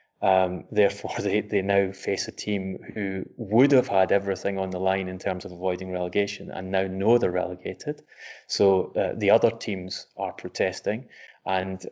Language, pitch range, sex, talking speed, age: English, 95-105 Hz, male, 170 wpm, 20-39